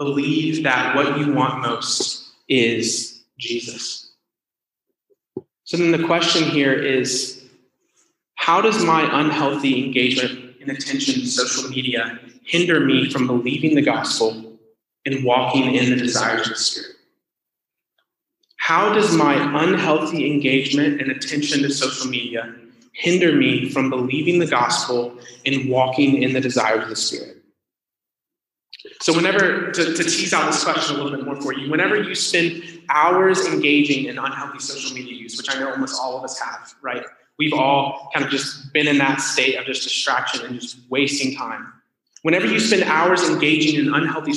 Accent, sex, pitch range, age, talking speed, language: American, male, 130-160 Hz, 20-39, 160 wpm, English